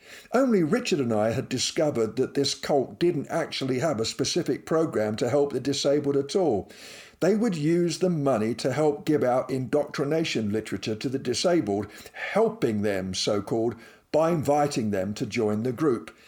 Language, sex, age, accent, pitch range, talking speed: English, male, 50-69, British, 130-175 Hz, 170 wpm